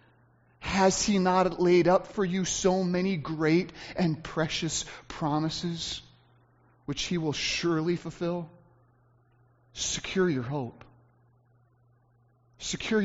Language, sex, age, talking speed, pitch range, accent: English, male, 30-49, 100 wpm, 125-185 Hz, American